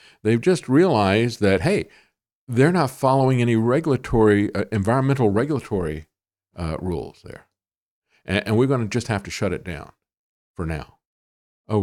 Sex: male